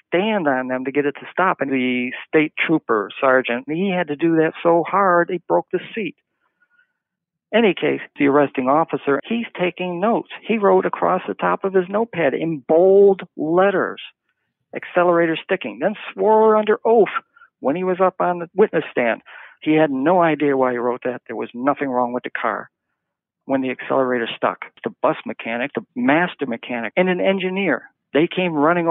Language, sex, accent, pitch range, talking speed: English, male, American, 140-180 Hz, 185 wpm